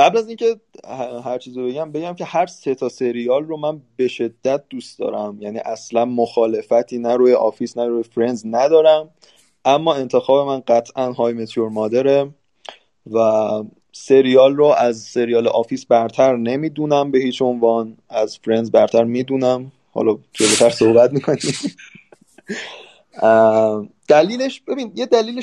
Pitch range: 115-140 Hz